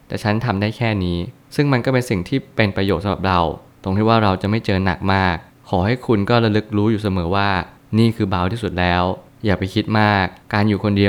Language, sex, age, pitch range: Thai, male, 20-39, 95-115 Hz